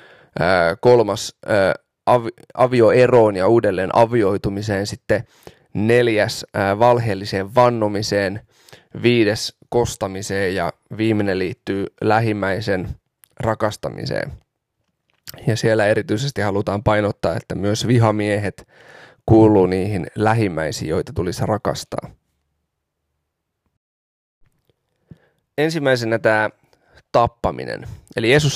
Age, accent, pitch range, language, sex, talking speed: 20-39, native, 100-120 Hz, Finnish, male, 75 wpm